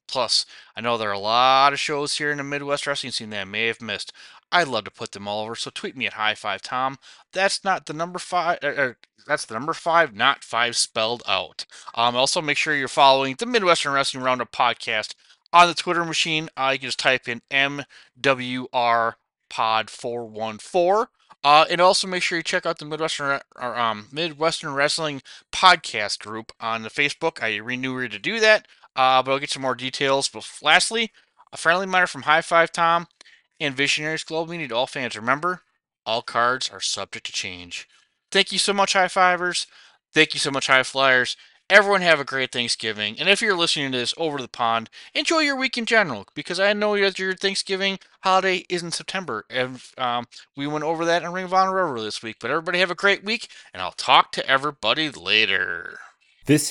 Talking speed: 205 wpm